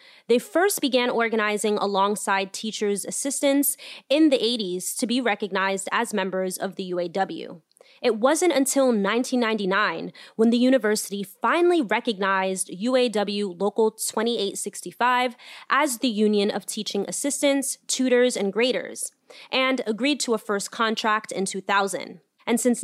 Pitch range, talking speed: 200-260 Hz, 130 wpm